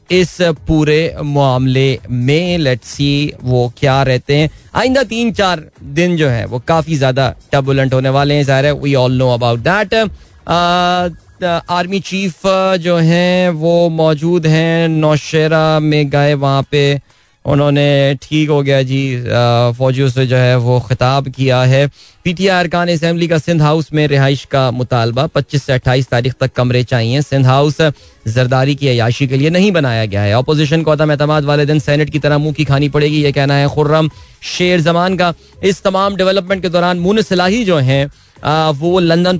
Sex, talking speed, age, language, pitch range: male, 170 wpm, 20-39, Hindi, 130-160 Hz